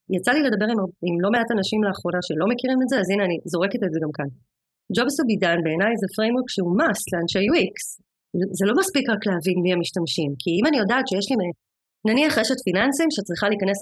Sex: female